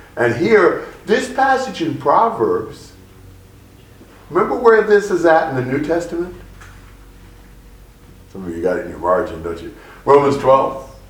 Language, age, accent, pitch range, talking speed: English, 50-69, American, 120-180 Hz, 145 wpm